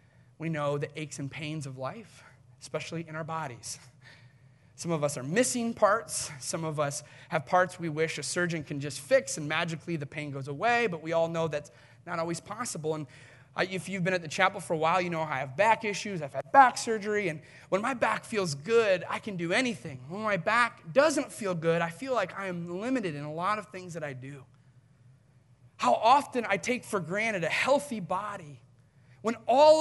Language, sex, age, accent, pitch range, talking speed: English, male, 30-49, American, 140-225 Hz, 210 wpm